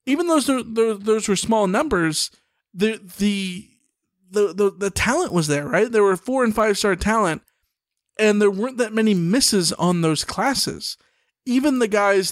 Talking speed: 170 wpm